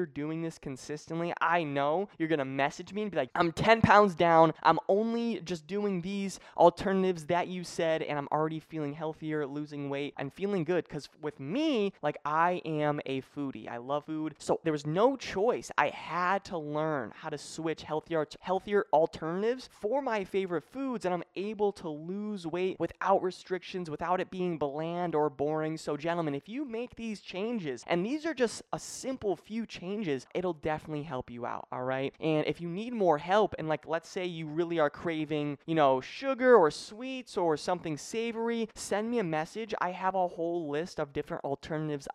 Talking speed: 190 wpm